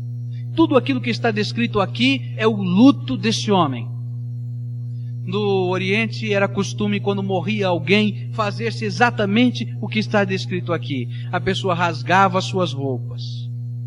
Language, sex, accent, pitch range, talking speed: Portuguese, male, Brazilian, 115-140 Hz, 130 wpm